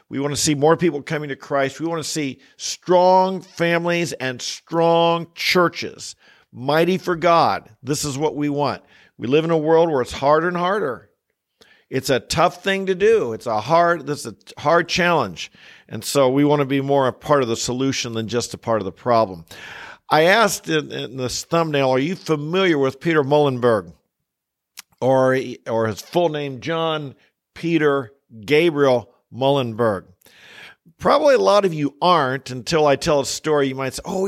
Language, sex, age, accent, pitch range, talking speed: English, male, 50-69, American, 135-165 Hz, 185 wpm